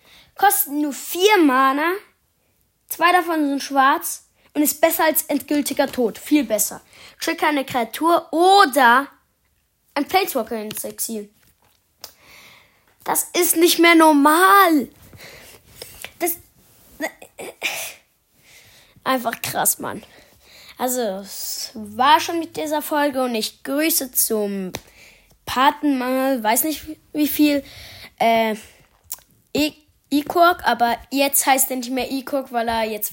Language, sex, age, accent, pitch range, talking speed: German, female, 20-39, German, 245-315 Hz, 110 wpm